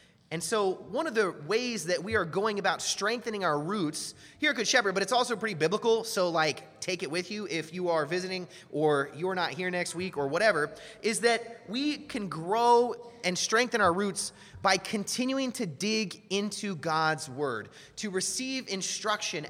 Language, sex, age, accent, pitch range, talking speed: English, male, 30-49, American, 145-205 Hz, 185 wpm